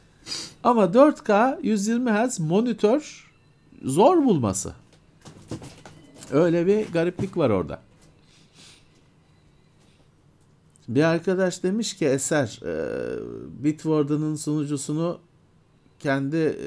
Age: 50-69